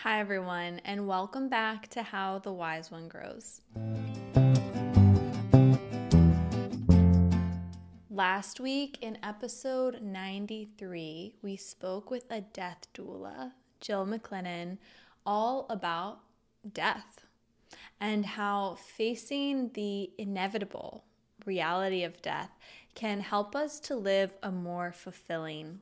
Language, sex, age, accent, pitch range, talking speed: English, female, 20-39, American, 175-215 Hz, 100 wpm